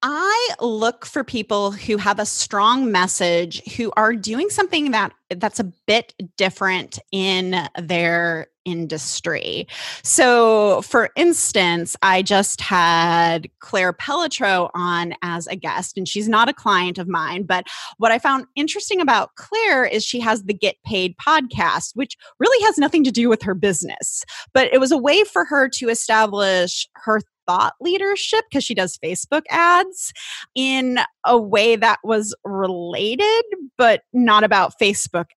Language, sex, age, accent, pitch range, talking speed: English, female, 20-39, American, 185-265 Hz, 155 wpm